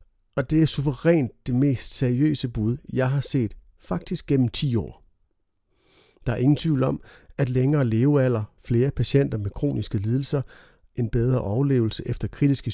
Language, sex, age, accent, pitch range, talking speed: Danish, male, 40-59, native, 115-150 Hz, 155 wpm